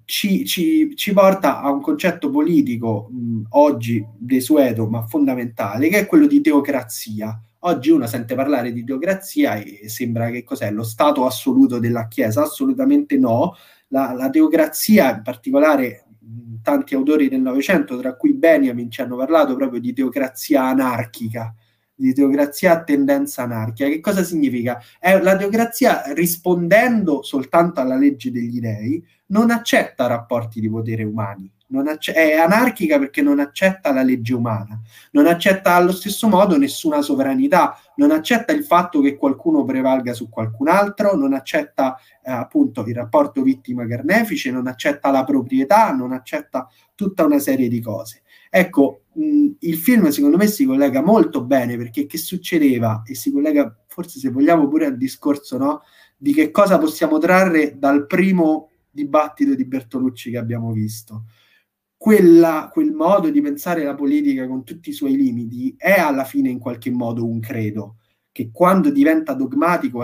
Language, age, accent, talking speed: Italian, 20-39, native, 155 wpm